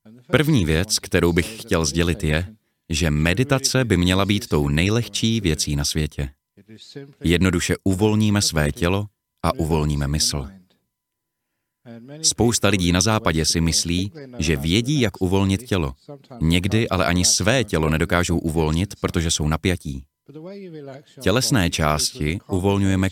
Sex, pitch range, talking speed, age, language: male, 80-110 Hz, 125 wpm, 30-49, Czech